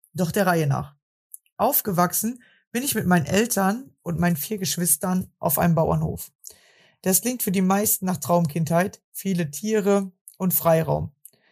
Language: German